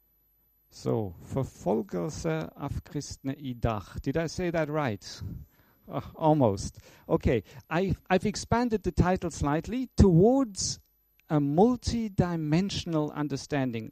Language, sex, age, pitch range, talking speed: Danish, male, 50-69, 125-165 Hz, 105 wpm